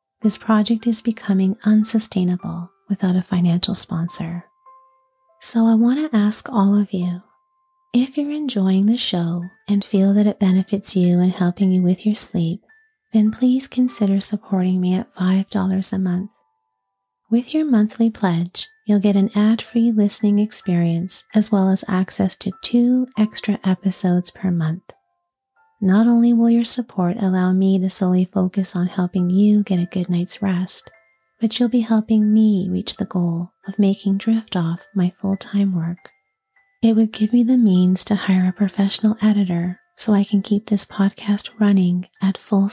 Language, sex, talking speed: English, female, 165 wpm